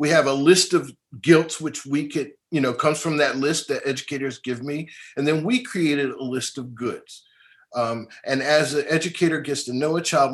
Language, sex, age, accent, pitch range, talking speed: English, male, 50-69, American, 125-165 Hz, 215 wpm